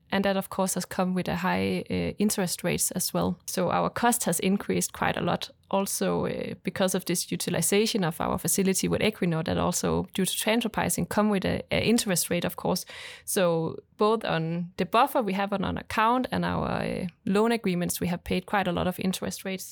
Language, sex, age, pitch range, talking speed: English, female, 20-39, 175-205 Hz, 215 wpm